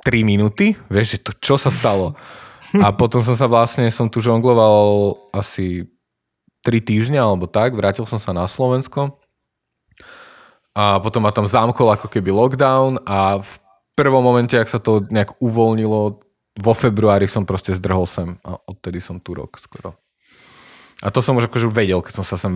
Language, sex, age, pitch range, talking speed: Slovak, male, 20-39, 95-120 Hz, 175 wpm